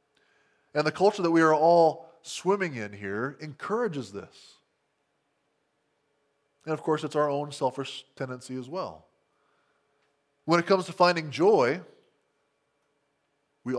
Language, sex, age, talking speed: English, male, 20-39, 125 wpm